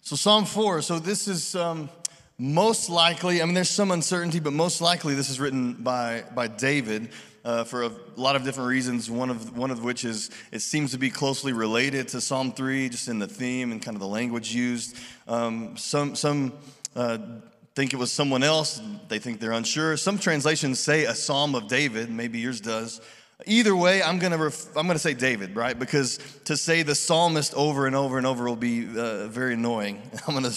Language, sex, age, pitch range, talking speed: English, male, 30-49, 125-170 Hz, 215 wpm